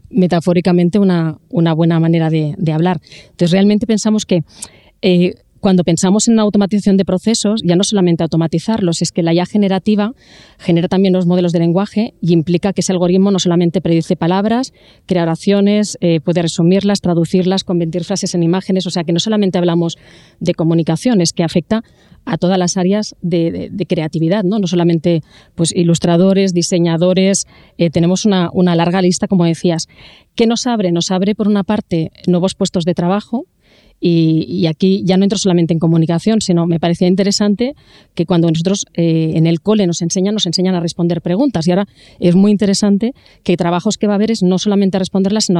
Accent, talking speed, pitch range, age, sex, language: Spanish, 185 wpm, 170-200 Hz, 30-49, female, Spanish